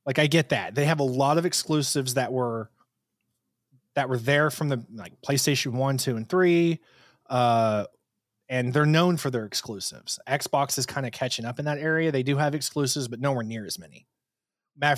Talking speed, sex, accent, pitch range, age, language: 195 wpm, male, American, 120-155 Hz, 20-39, English